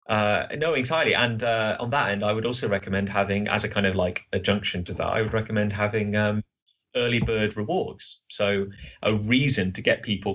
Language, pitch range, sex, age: English, 95-110 Hz, male, 30-49